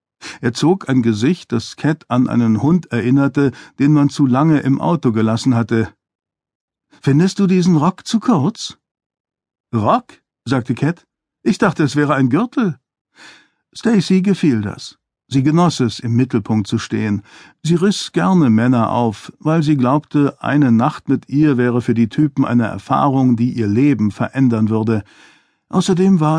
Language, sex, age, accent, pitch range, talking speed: German, male, 50-69, German, 120-160 Hz, 155 wpm